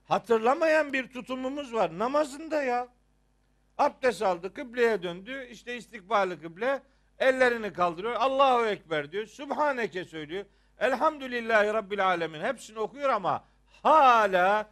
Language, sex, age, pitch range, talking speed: Turkish, male, 50-69, 185-250 Hz, 110 wpm